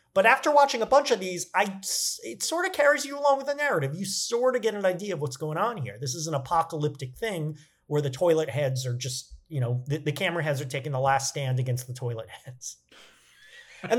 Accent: American